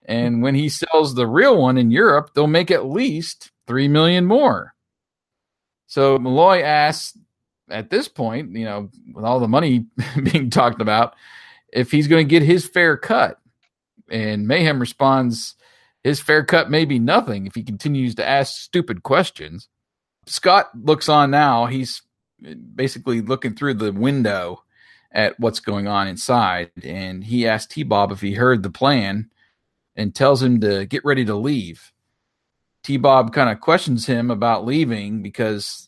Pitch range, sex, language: 110-145 Hz, male, English